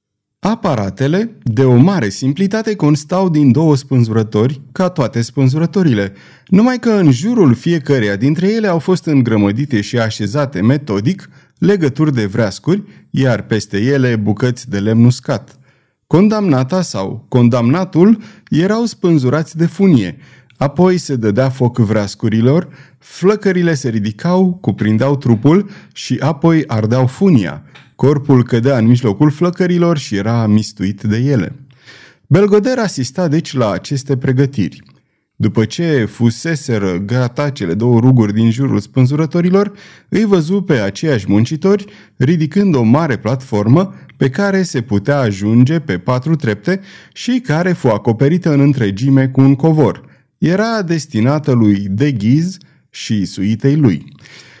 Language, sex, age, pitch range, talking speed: Romanian, male, 30-49, 115-170 Hz, 125 wpm